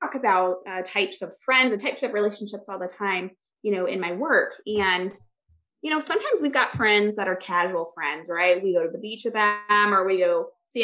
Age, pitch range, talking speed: 20-39, 195-260 Hz, 225 wpm